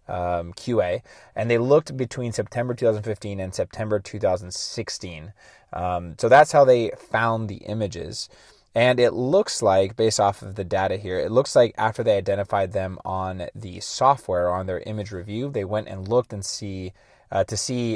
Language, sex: English, male